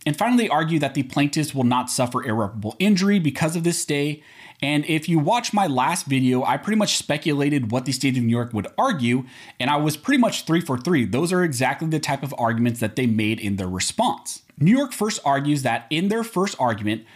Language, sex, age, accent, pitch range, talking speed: English, male, 30-49, American, 120-180 Hz, 225 wpm